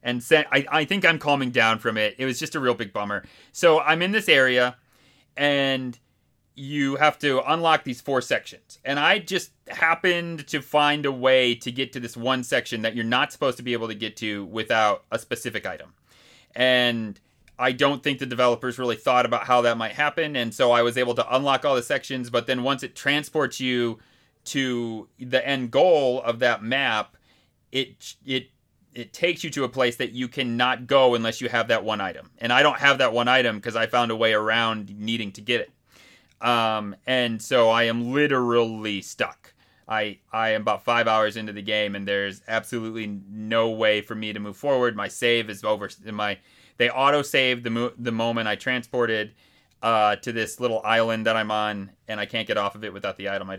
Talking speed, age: 210 wpm, 30-49